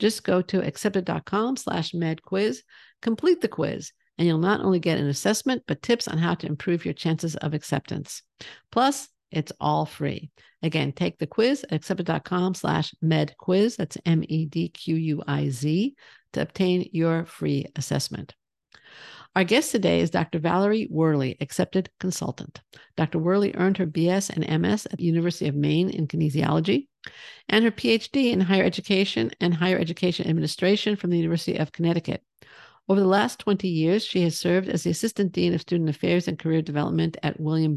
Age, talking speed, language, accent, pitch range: 50-69, 165 wpm, English, American, 160-195 Hz